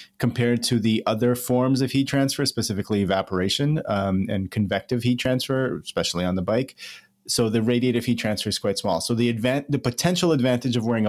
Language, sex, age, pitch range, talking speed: English, male, 30-49, 105-125 Hz, 185 wpm